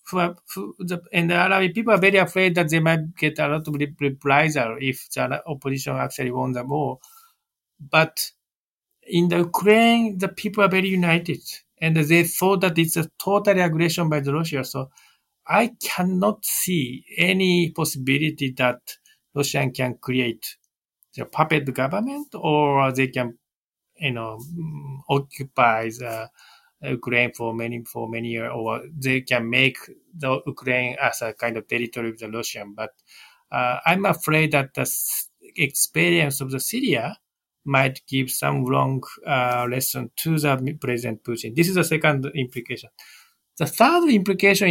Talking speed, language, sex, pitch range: 150 wpm, English, male, 130-185 Hz